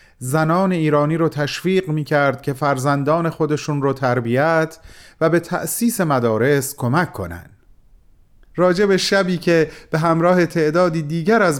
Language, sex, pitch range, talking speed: Persian, male, 125-175 Hz, 130 wpm